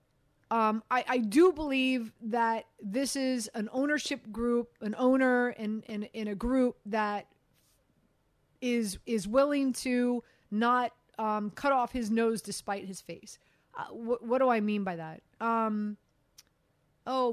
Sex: female